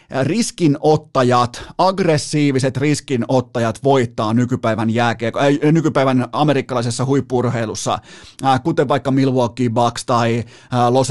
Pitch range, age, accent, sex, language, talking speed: 120-145 Hz, 30-49, native, male, Finnish, 95 wpm